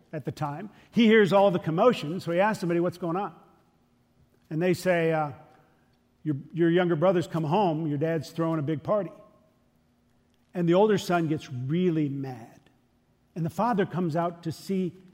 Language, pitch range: English, 155-195 Hz